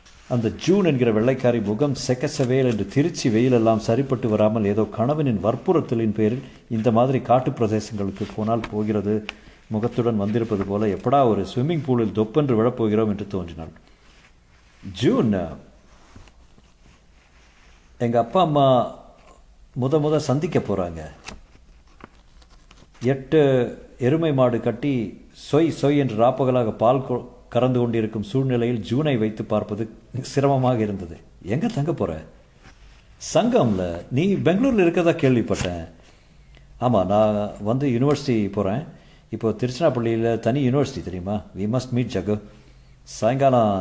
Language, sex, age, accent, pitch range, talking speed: Tamil, male, 50-69, native, 105-130 Hz, 110 wpm